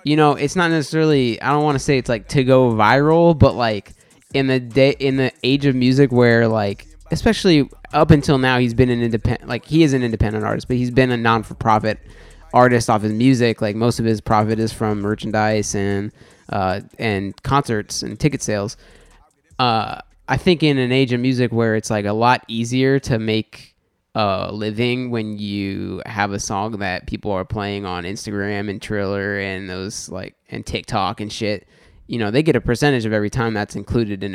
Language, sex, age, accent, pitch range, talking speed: English, male, 20-39, American, 105-135 Hz, 205 wpm